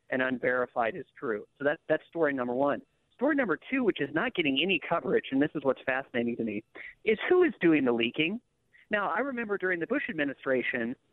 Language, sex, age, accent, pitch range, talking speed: English, male, 40-59, American, 135-200 Hz, 205 wpm